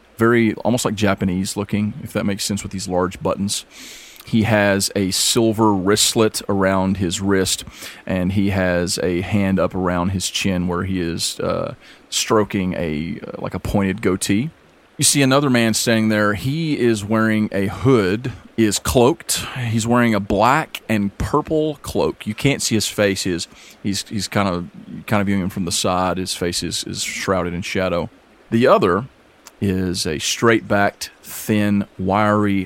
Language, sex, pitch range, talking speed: English, male, 95-110 Hz, 170 wpm